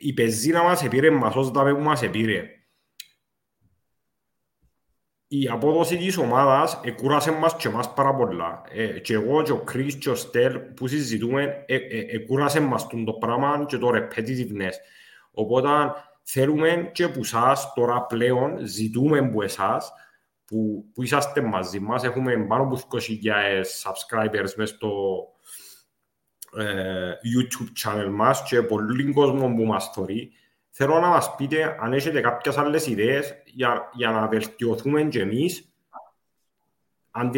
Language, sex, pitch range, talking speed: English, male, 115-145 Hz, 95 wpm